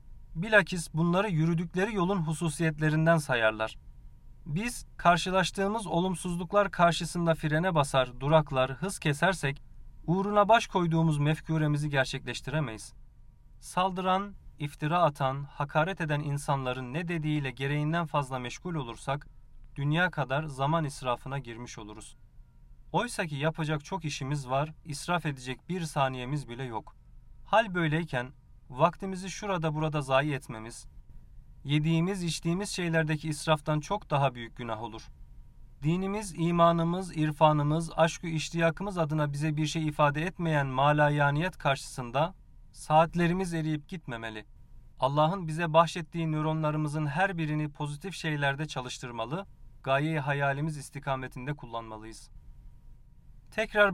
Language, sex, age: Turkish, male, 30-49